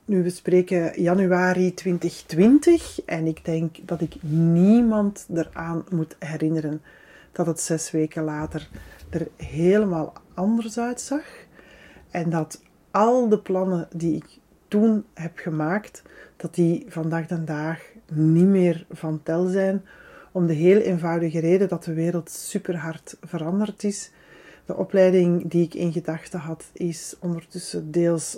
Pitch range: 165-185 Hz